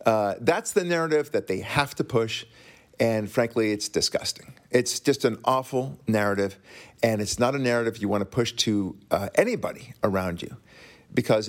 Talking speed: 170 wpm